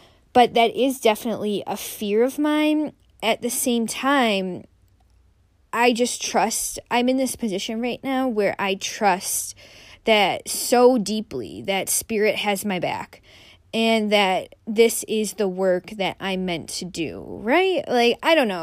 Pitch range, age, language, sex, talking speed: 190-250 Hz, 10-29, English, female, 155 wpm